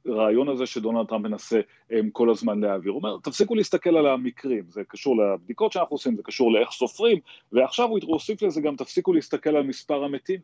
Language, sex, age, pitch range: Hebrew, male, 30-49, 110-140 Hz